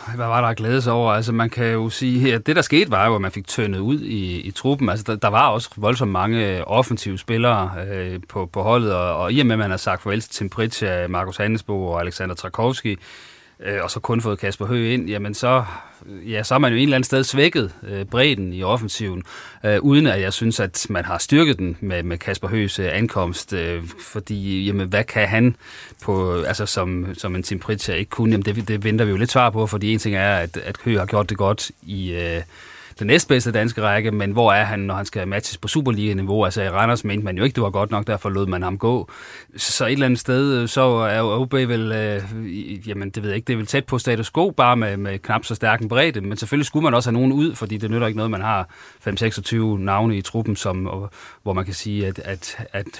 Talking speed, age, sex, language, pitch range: 245 wpm, 30-49, male, Danish, 100-115 Hz